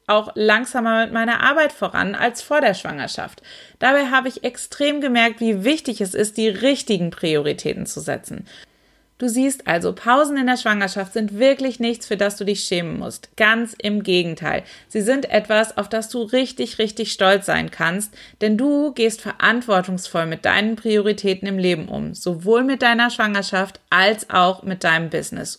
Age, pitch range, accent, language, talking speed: 30-49, 195-240 Hz, German, German, 170 wpm